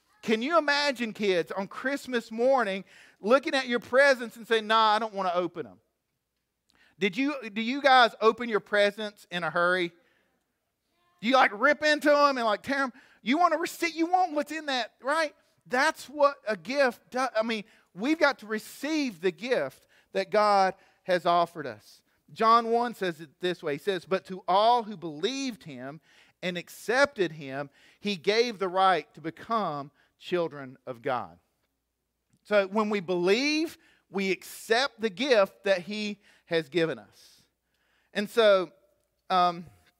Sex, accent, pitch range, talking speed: male, American, 160-235 Hz, 165 wpm